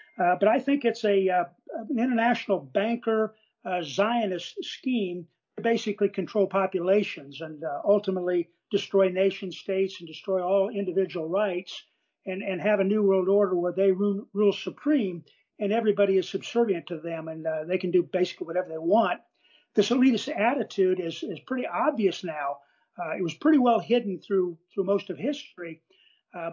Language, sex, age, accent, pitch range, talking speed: English, male, 50-69, American, 175-210 Hz, 170 wpm